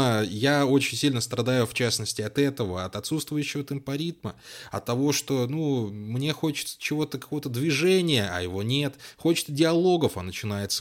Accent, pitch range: native, 110-150 Hz